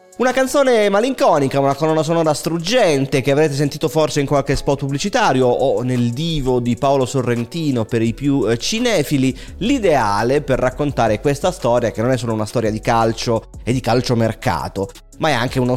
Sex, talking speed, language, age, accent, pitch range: male, 175 wpm, Italian, 30-49, native, 120-165 Hz